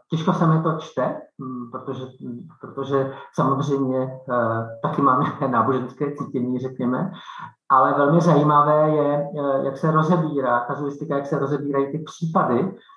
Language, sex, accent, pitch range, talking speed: Czech, male, native, 125-145 Hz, 125 wpm